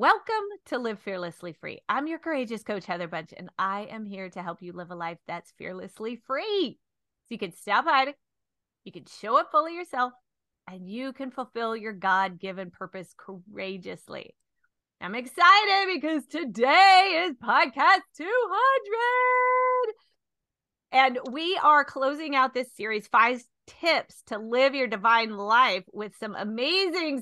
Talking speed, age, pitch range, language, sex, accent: 150 wpm, 30-49, 210-310 Hz, English, female, American